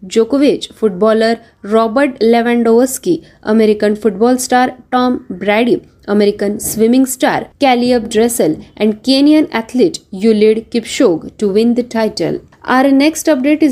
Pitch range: 225-265 Hz